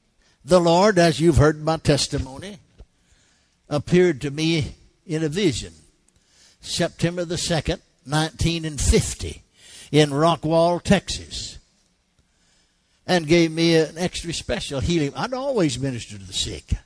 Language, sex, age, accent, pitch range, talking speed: English, male, 60-79, American, 120-170 Hz, 120 wpm